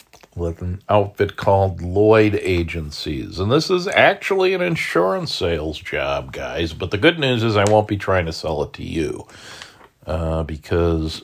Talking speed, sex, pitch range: 165 wpm, male, 85-105 Hz